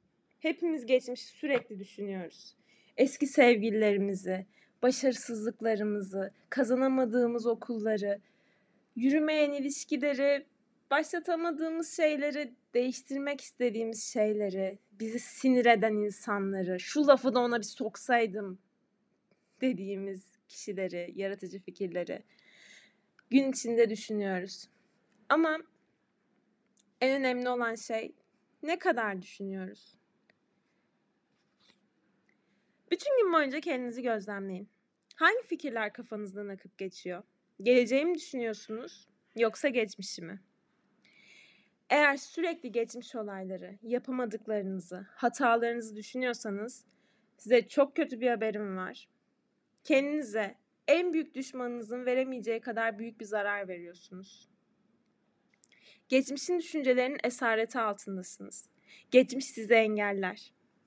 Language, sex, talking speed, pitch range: Turkish, female, 85 wpm, 205-265 Hz